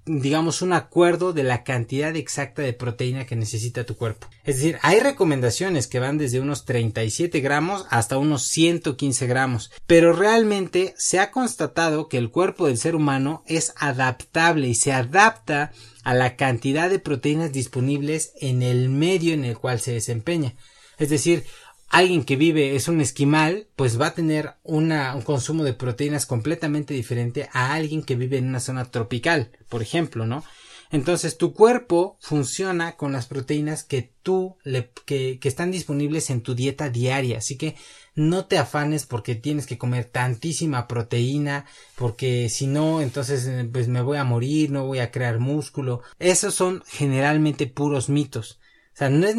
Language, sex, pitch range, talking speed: Spanish, male, 125-160 Hz, 170 wpm